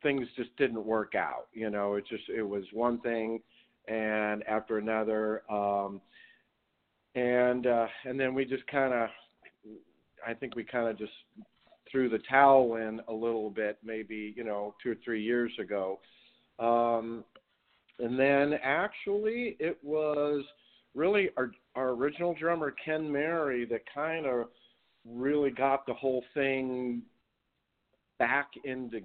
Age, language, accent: 50-69, English, American